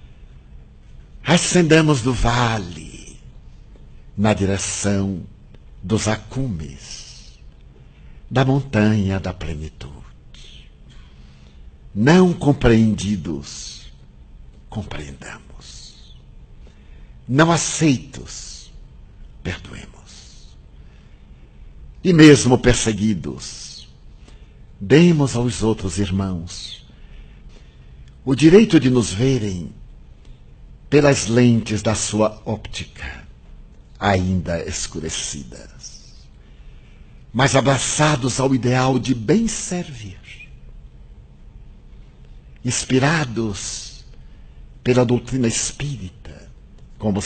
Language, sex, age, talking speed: Portuguese, male, 60-79, 60 wpm